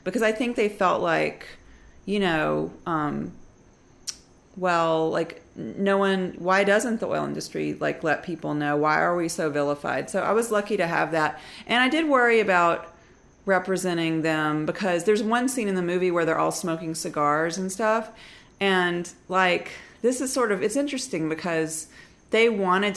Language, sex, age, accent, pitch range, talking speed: English, female, 40-59, American, 165-215 Hz, 170 wpm